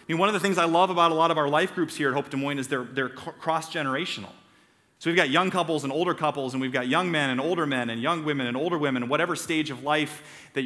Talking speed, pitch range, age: 285 wpm, 125-170 Hz, 30-49